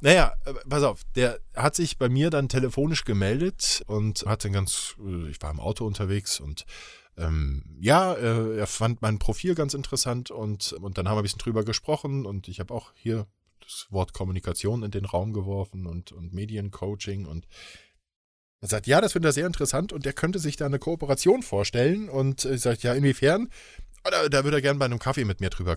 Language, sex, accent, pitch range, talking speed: German, male, German, 95-135 Hz, 200 wpm